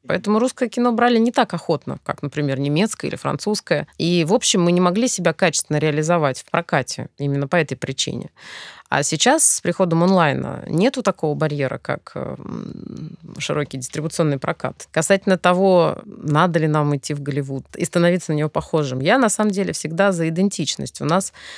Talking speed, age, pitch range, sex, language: 170 wpm, 20-39, 150-195 Hz, female, Russian